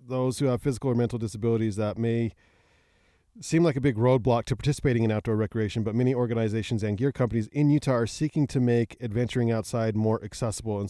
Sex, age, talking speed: male, 40-59, 200 wpm